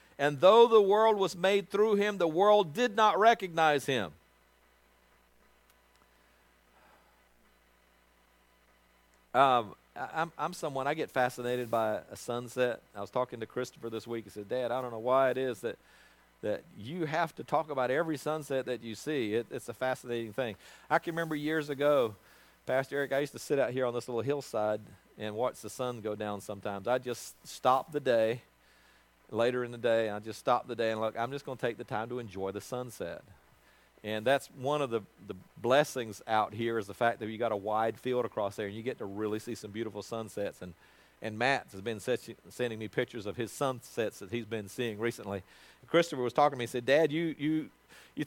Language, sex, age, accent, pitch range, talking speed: English, male, 50-69, American, 105-155 Hz, 205 wpm